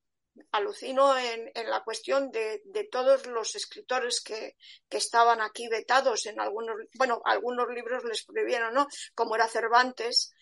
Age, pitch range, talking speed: 40-59, 230-300 Hz, 150 wpm